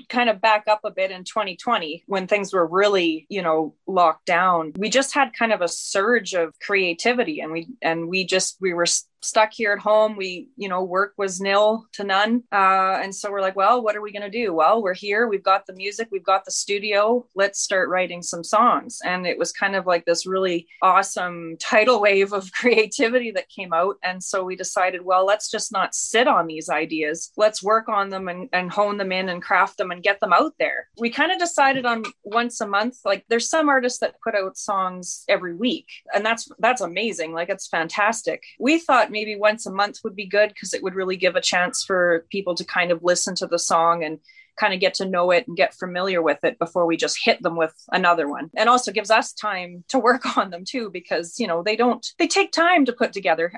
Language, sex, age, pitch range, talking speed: English, female, 20-39, 180-230 Hz, 230 wpm